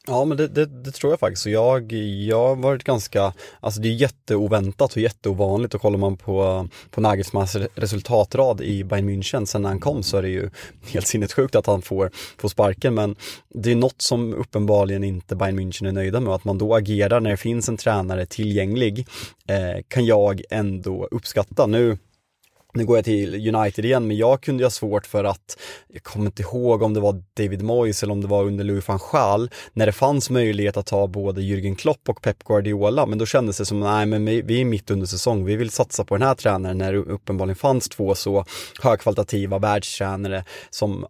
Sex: male